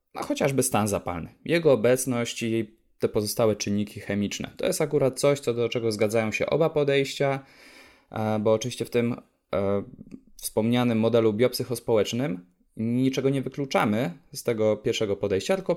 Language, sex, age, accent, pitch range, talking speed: Polish, male, 20-39, native, 105-135 Hz, 140 wpm